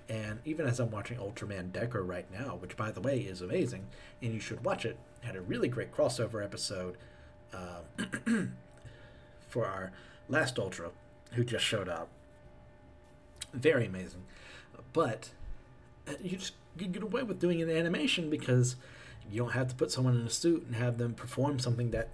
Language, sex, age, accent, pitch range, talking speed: English, male, 40-59, American, 105-135 Hz, 170 wpm